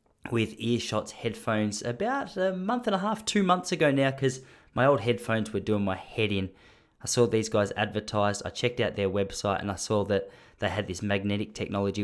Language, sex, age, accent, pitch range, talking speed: English, male, 20-39, Australian, 100-125 Hz, 205 wpm